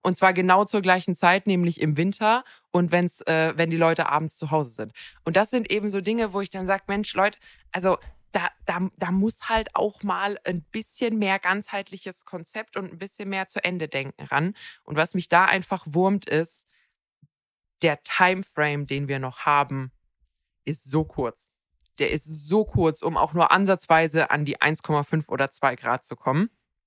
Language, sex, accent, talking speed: German, female, German, 190 wpm